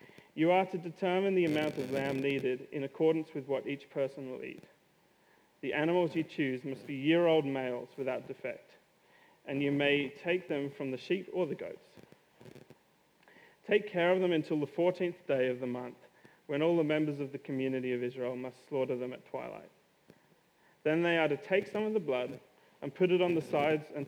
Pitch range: 135-170 Hz